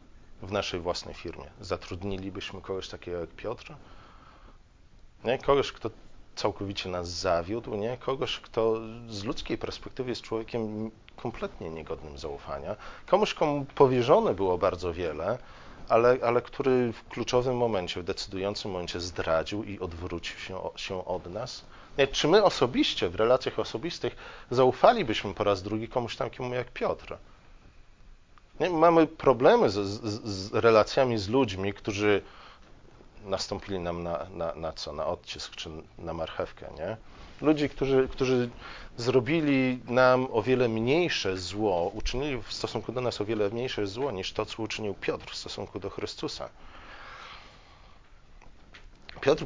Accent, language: native, Polish